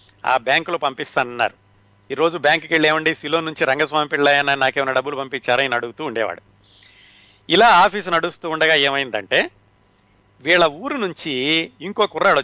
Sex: male